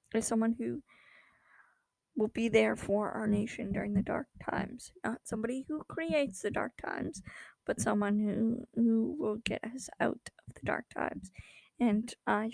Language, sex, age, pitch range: English, female, 20-39, 215-235 Hz